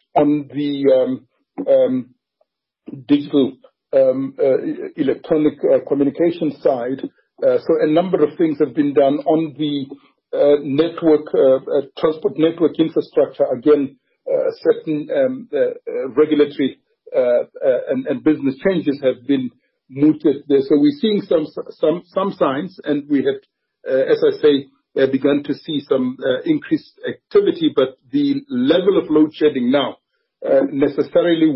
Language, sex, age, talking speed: English, male, 60-79, 145 wpm